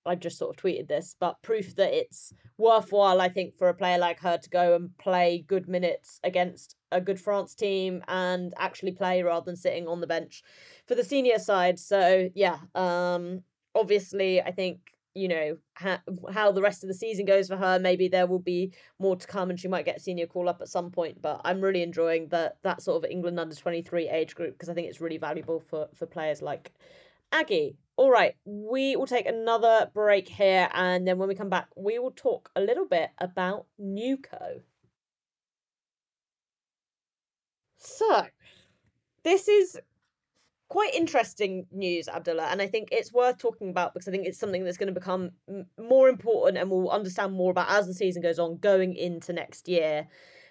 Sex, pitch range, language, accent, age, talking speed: female, 175-205 Hz, English, British, 20-39, 195 wpm